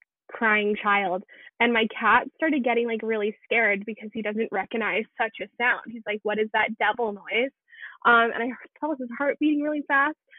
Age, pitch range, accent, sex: 10-29, 220-255 Hz, American, female